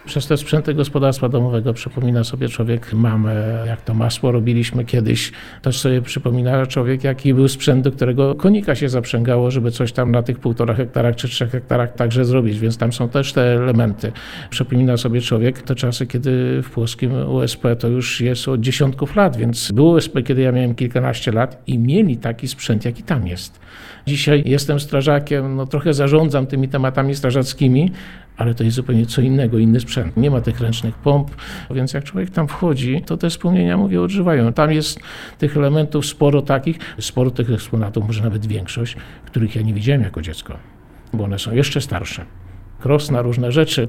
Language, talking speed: Polish, 180 wpm